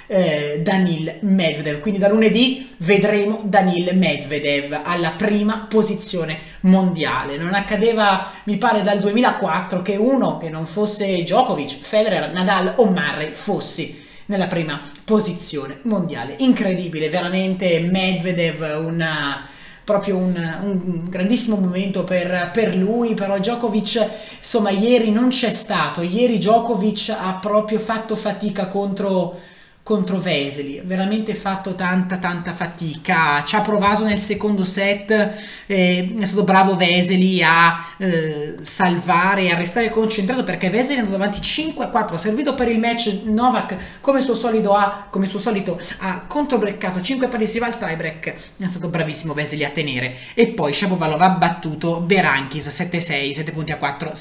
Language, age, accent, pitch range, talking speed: Italian, 30-49, native, 170-210 Hz, 140 wpm